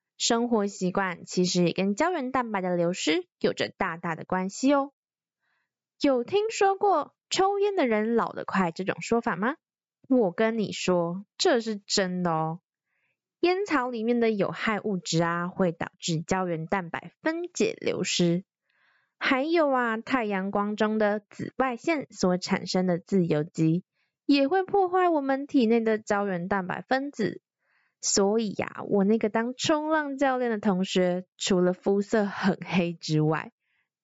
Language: Chinese